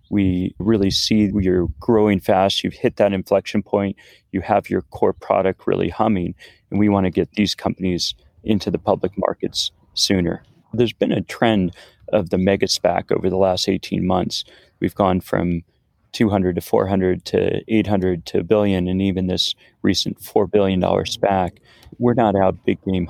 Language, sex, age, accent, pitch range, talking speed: English, male, 30-49, American, 90-105 Hz, 170 wpm